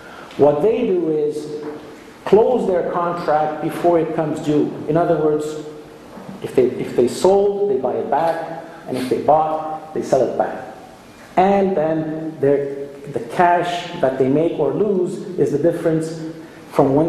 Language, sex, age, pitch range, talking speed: English, male, 50-69, 140-175 Hz, 160 wpm